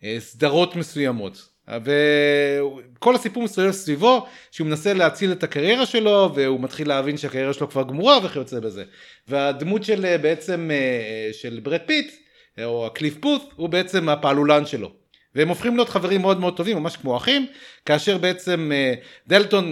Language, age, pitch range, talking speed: Hebrew, 40-59, 130-190 Hz, 130 wpm